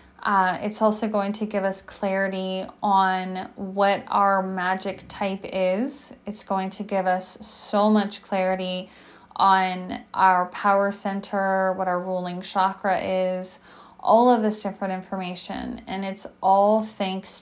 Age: 20-39